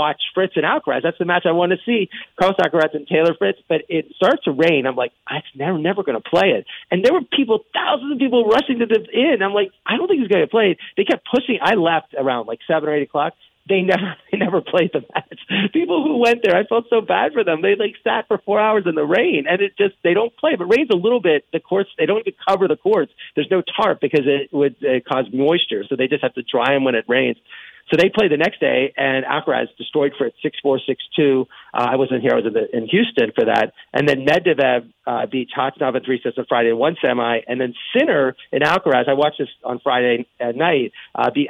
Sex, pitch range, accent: male, 135-205 Hz, American